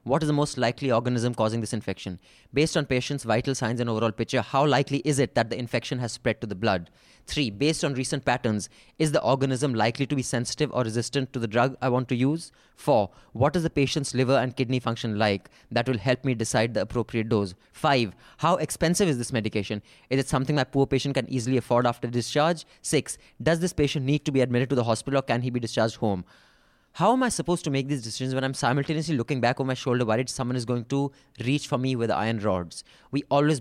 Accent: Indian